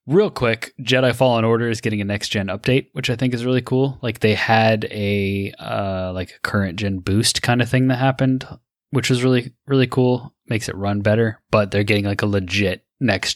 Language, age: English, 10-29